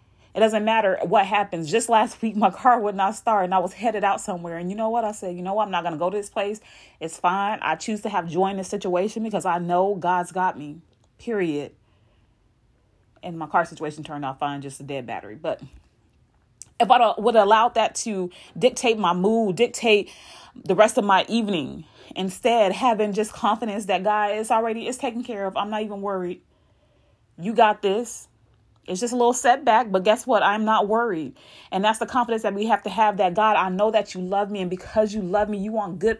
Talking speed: 220 wpm